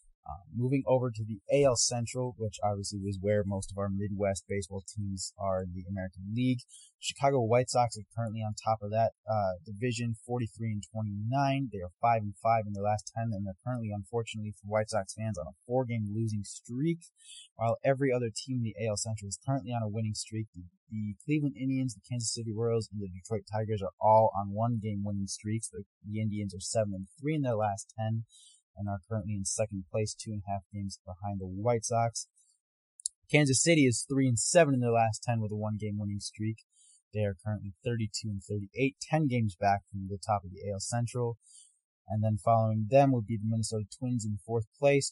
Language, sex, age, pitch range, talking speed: English, male, 20-39, 100-120 Hz, 210 wpm